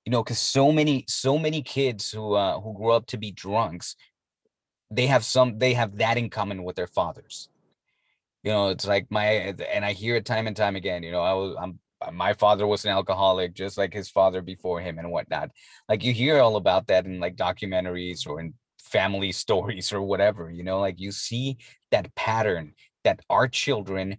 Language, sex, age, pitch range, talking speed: English, male, 30-49, 100-130 Hz, 205 wpm